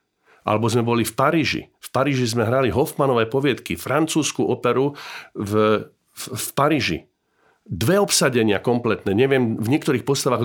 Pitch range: 105-135 Hz